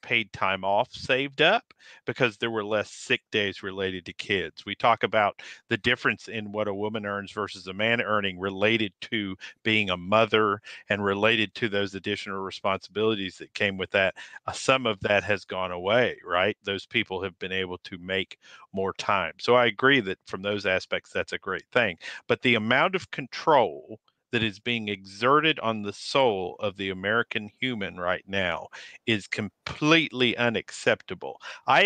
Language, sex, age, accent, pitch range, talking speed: English, male, 50-69, American, 100-125 Hz, 175 wpm